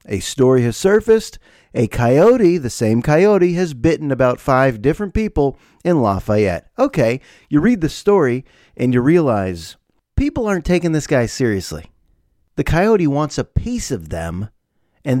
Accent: American